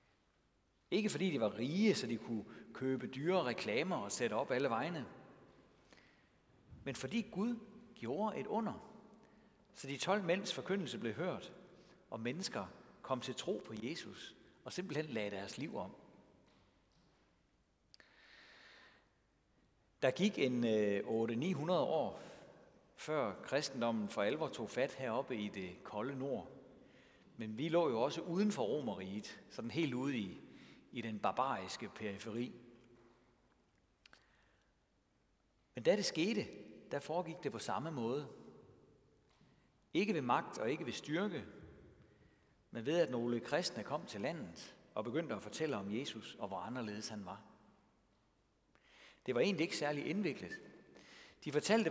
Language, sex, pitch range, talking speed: Danish, male, 115-195 Hz, 140 wpm